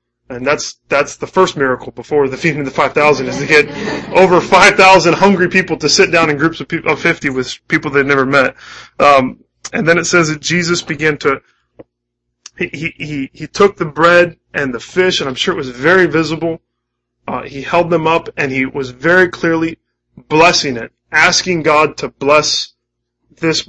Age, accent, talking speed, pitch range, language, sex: 20-39, American, 195 wpm, 125-160 Hz, English, male